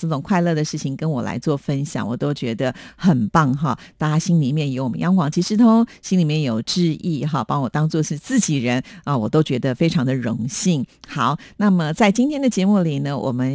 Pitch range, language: 145-185 Hz, Chinese